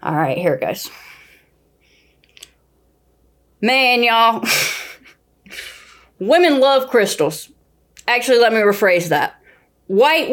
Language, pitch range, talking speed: English, 175-230 Hz, 95 wpm